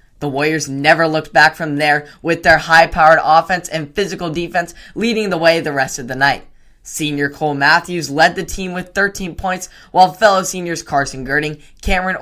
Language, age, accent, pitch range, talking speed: English, 10-29, American, 145-175 Hz, 180 wpm